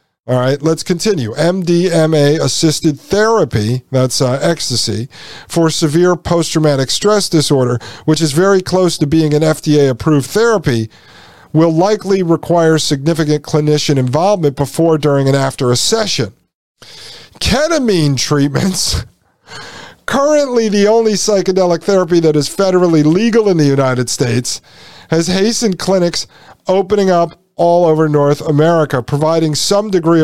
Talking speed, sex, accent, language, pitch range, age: 120 wpm, male, American, English, 140-185 Hz, 50-69